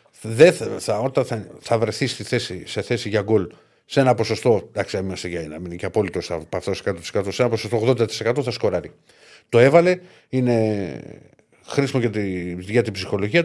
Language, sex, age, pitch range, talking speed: Greek, male, 50-69, 105-145 Hz, 175 wpm